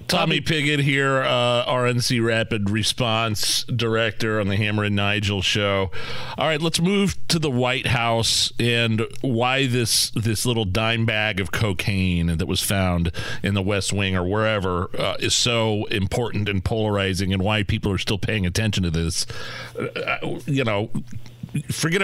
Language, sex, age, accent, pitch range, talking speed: English, male, 40-59, American, 110-150 Hz, 160 wpm